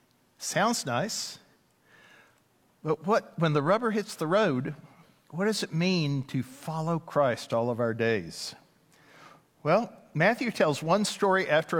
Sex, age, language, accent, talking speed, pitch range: male, 50-69, English, American, 135 wpm, 135-175 Hz